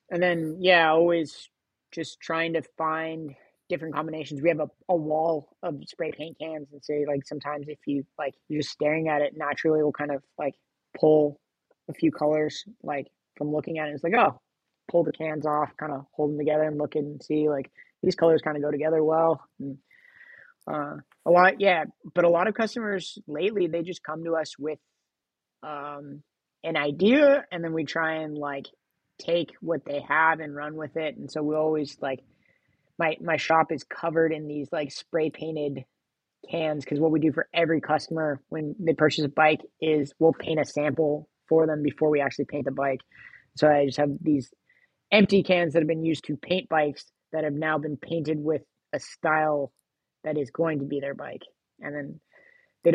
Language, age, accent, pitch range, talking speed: English, 20-39, American, 145-165 Hz, 200 wpm